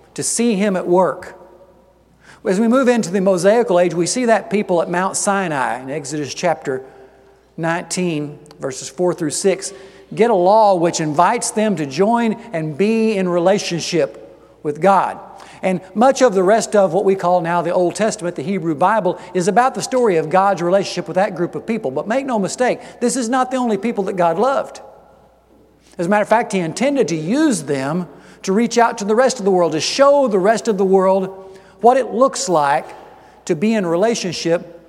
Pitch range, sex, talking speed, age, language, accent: 170-220 Hz, male, 200 wpm, 50-69, English, American